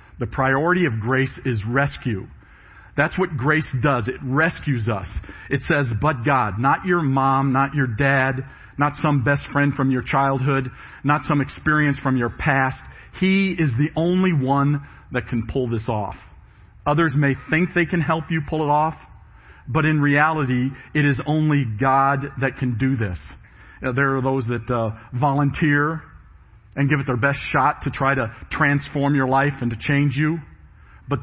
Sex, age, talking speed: male, 40-59, 175 wpm